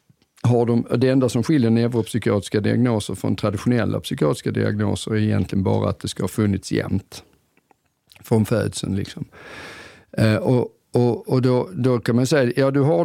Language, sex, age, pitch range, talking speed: Swedish, male, 50-69, 105-125 Hz, 170 wpm